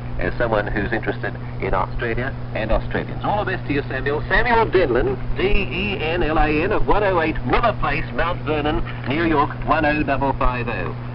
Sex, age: male, 60-79